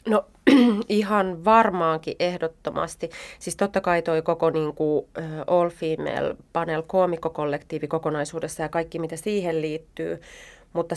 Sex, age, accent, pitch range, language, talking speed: female, 30-49, native, 155-180 Hz, Finnish, 115 wpm